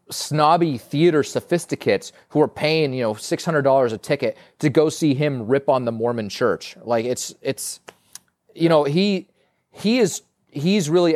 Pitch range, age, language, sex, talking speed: 130-160 Hz, 30-49, English, male, 165 wpm